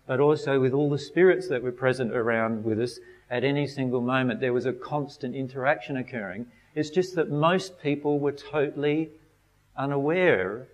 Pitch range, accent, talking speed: 130-165 Hz, Australian, 170 wpm